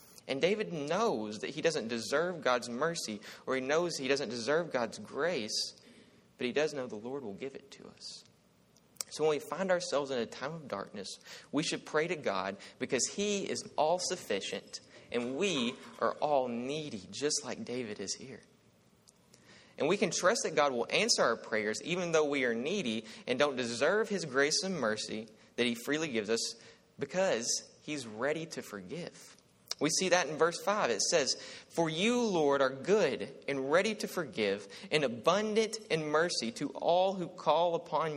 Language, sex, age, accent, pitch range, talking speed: English, male, 30-49, American, 125-180 Hz, 180 wpm